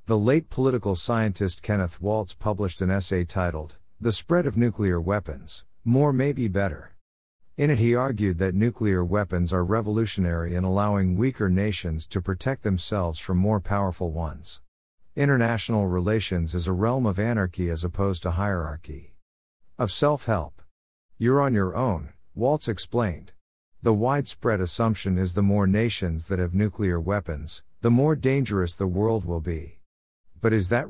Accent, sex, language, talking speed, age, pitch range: American, male, English, 155 wpm, 50-69, 90-115 Hz